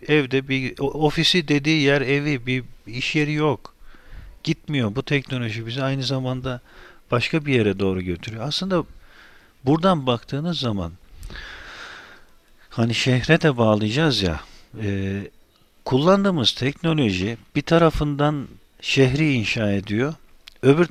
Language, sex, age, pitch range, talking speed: Turkish, male, 50-69, 115-150 Hz, 110 wpm